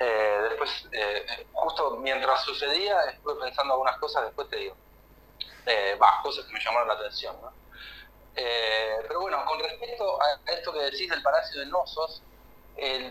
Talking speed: 165 wpm